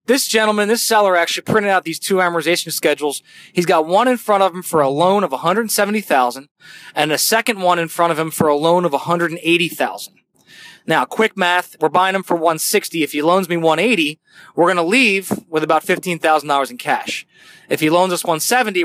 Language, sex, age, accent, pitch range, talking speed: English, male, 20-39, American, 160-205 Hz, 205 wpm